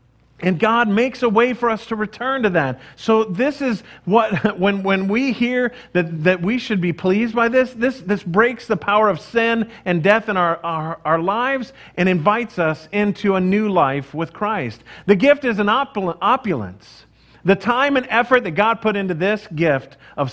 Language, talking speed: English, 200 wpm